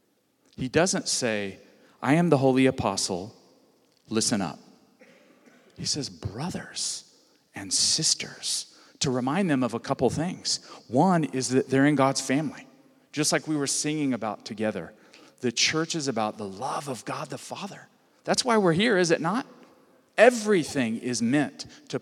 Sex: male